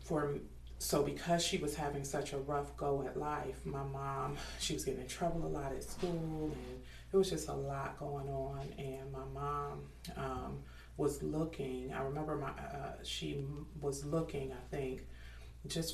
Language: English